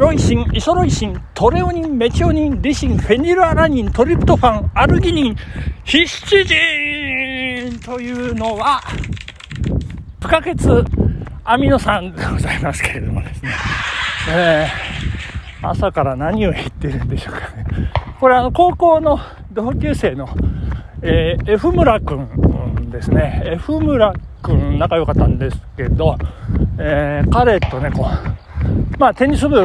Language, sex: Japanese, male